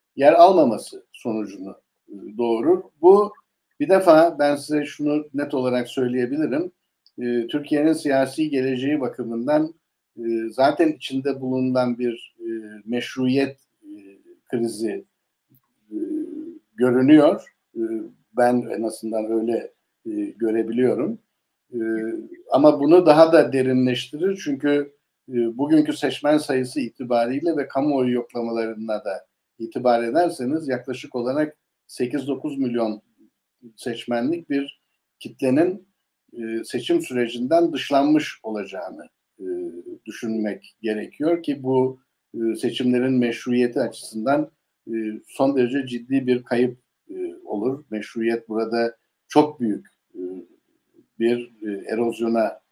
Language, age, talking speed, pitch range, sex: Turkish, 60-79, 85 wpm, 120-165 Hz, male